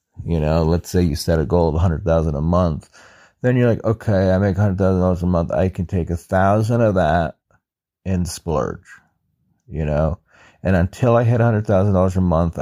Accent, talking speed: American, 225 wpm